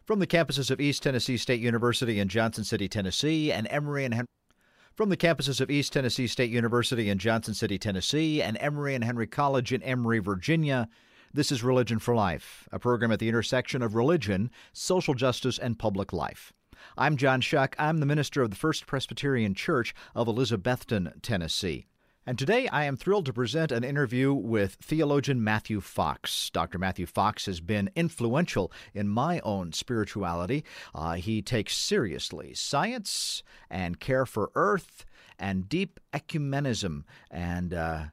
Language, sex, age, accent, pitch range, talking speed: English, male, 50-69, American, 100-140 Hz, 165 wpm